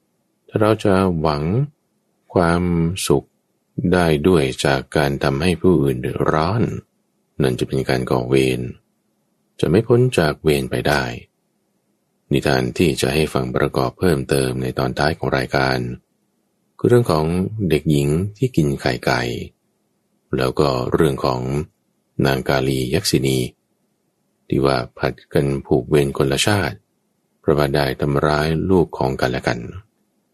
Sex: male